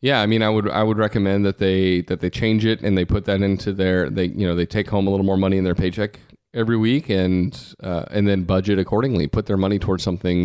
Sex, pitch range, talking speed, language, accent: male, 90-110 Hz, 265 wpm, English, American